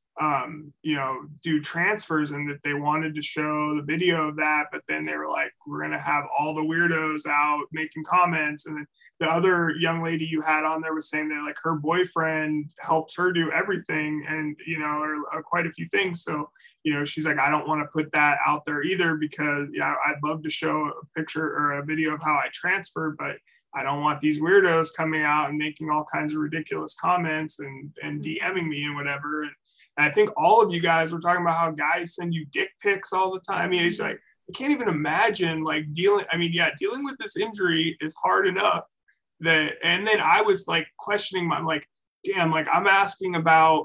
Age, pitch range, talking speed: 20-39, 150-170 Hz, 225 wpm